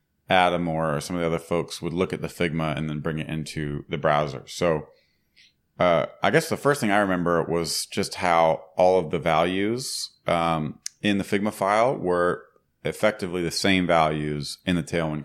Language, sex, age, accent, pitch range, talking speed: English, male, 30-49, American, 80-95 Hz, 190 wpm